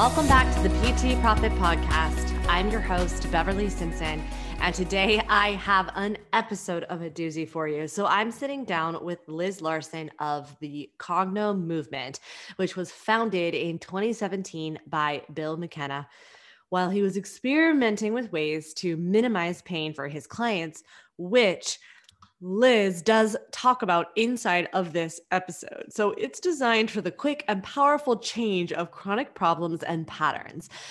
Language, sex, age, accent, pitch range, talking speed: English, female, 20-39, American, 165-225 Hz, 150 wpm